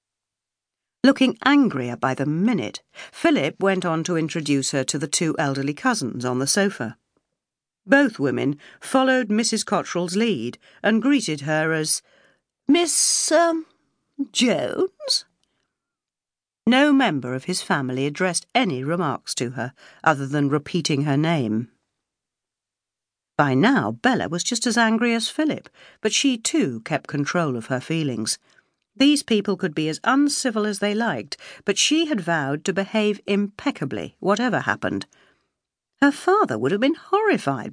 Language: English